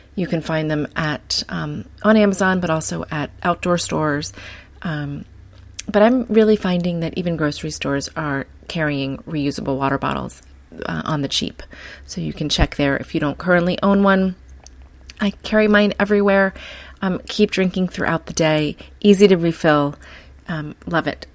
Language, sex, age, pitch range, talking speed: English, female, 30-49, 150-195 Hz, 165 wpm